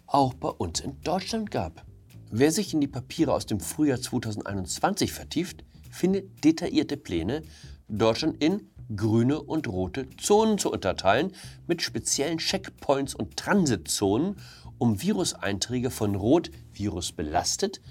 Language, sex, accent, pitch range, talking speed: German, male, German, 95-155 Hz, 120 wpm